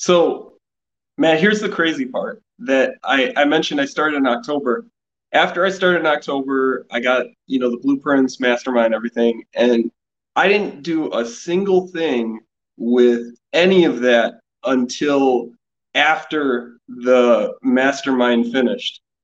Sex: male